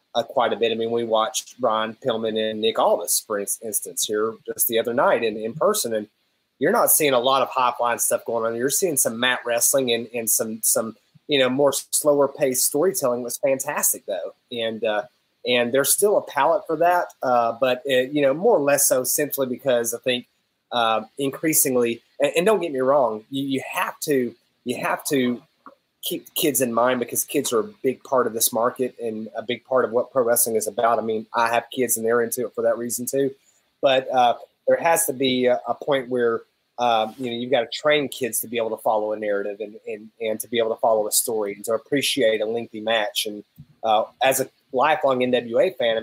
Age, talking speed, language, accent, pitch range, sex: 30-49, 230 wpm, English, American, 115-140 Hz, male